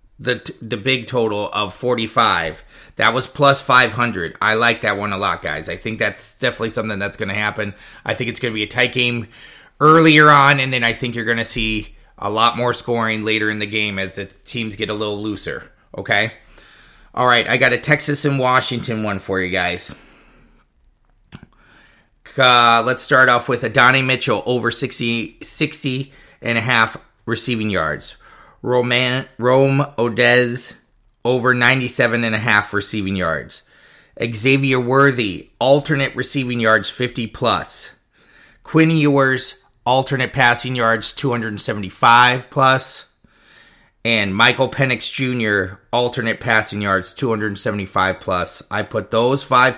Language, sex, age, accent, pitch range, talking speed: English, male, 30-49, American, 110-130 Hz, 160 wpm